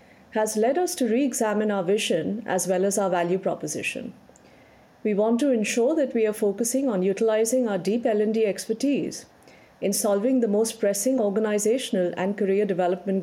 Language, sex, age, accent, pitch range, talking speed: English, female, 50-69, Indian, 190-245 Hz, 165 wpm